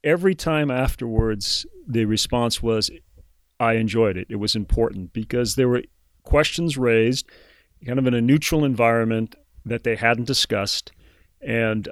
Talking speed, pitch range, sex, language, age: 140 wpm, 110-135 Hz, male, English, 40-59